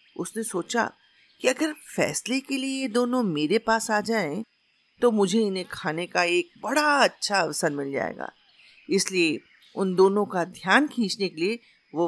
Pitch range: 175-285 Hz